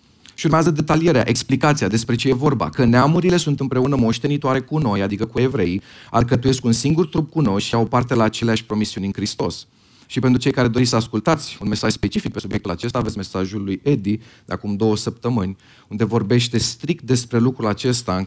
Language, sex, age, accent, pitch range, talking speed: Romanian, male, 30-49, native, 110-145 Hz, 195 wpm